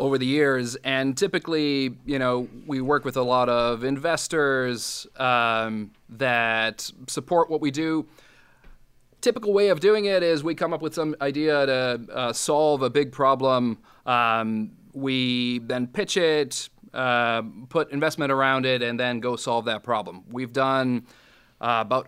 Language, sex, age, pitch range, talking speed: English, male, 30-49, 120-155 Hz, 160 wpm